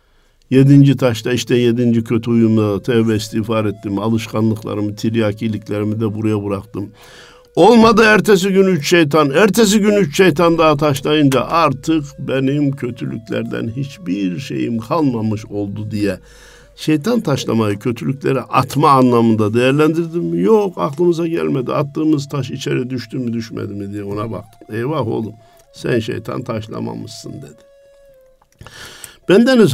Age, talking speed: 50-69, 120 wpm